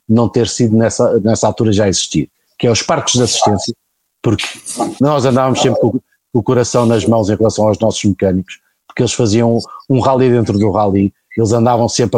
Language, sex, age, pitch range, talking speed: Portuguese, male, 50-69, 110-130 Hz, 195 wpm